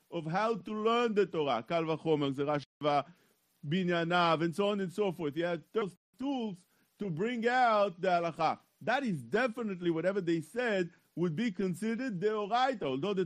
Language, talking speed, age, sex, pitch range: English, 160 wpm, 50-69, male, 165-225 Hz